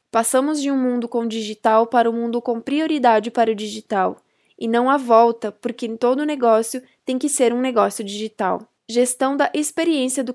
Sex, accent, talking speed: female, Brazilian, 185 wpm